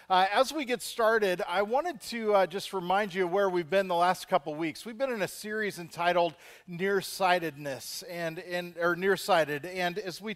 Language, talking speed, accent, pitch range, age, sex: English, 195 wpm, American, 185-230 Hz, 40-59, male